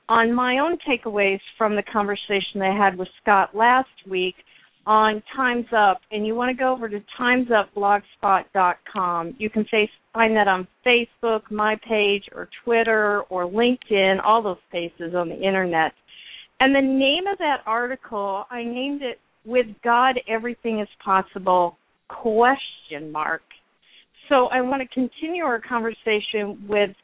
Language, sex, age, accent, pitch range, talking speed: English, female, 50-69, American, 205-250 Hz, 150 wpm